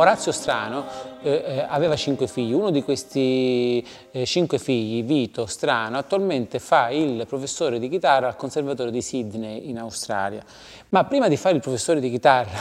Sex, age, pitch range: male, 30-49, 125-155 Hz